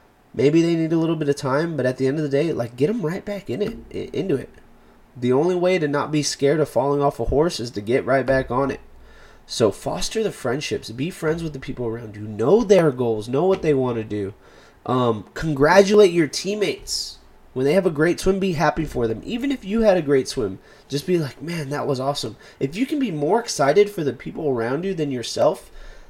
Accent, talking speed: American, 240 wpm